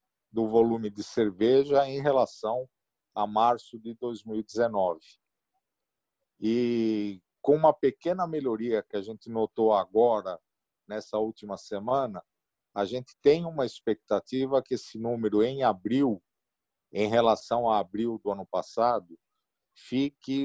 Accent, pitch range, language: Brazilian, 105-140 Hz, Portuguese